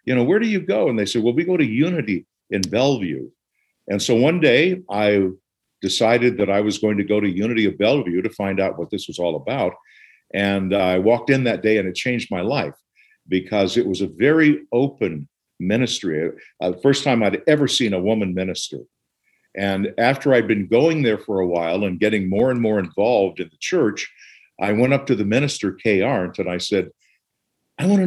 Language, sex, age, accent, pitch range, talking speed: English, male, 50-69, American, 95-130 Hz, 215 wpm